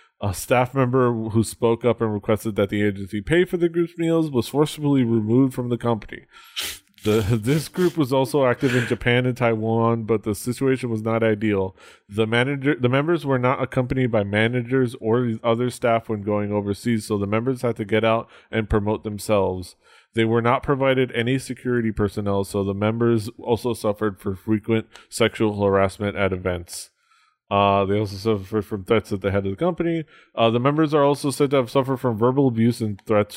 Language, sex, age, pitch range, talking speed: English, male, 20-39, 100-125 Hz, 190 wpm